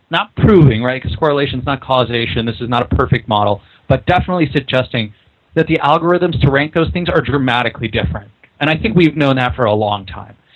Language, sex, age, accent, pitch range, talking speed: English, male, 30-49, American, 110-155 Hz, 210 wpm